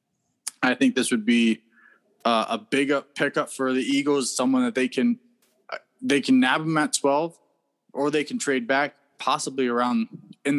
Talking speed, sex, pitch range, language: 165 wpm, male, 120-155 Hz, English